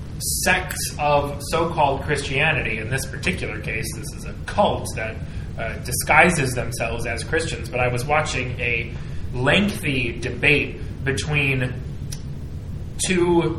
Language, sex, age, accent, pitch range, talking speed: English, male, 20-39, American, 115-165 Hz, 120 wpm